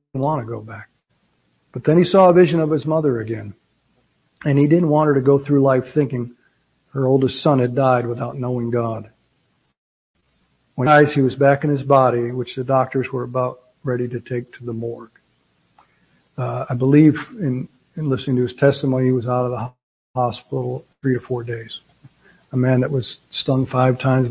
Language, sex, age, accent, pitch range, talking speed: English, male, 50-69, American, 120-145 Hz, 195 wpm